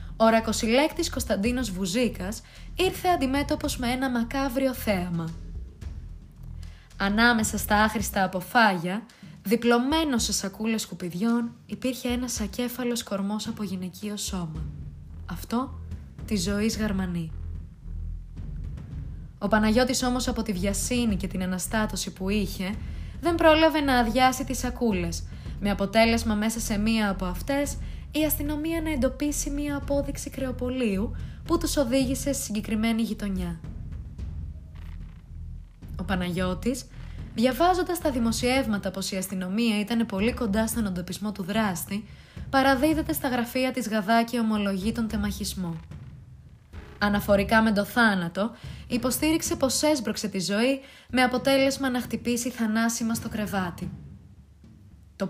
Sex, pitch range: female, 185-250 Hz